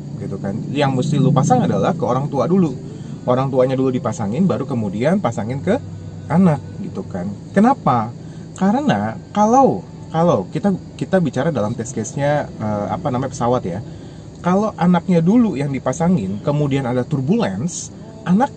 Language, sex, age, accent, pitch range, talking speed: Indonesian, male, 30-49, native, 125-185 Hz, 150 wpm